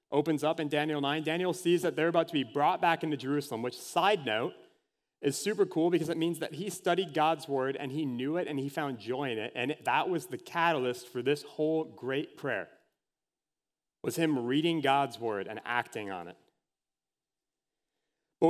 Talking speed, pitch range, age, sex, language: 195 wpm, 130-160 Hz, 30-49, male, English